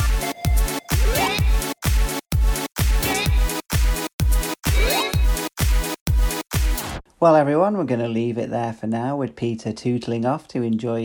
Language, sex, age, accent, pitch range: English, male, 40-59, British, 115-145 Hz